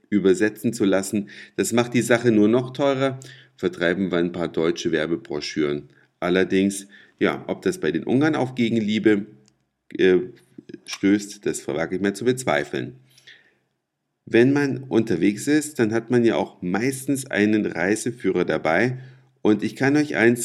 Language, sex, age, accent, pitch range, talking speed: German, male, 50-69, German, 100-125 Hz, 150 wpm